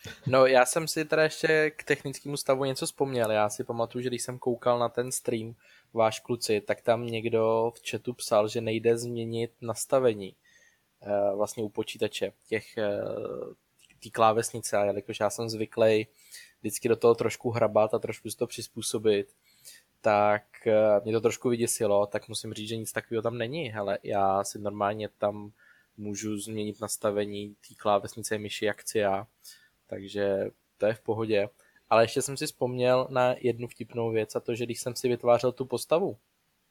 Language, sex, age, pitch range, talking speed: Czech, male, 20-39, 105-125 Hz, 165 wpm